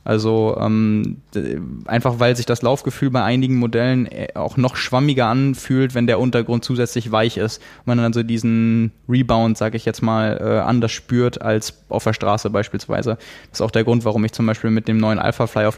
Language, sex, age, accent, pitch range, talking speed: German, male, 20-39, German, 110-130 Hz, 205 wpm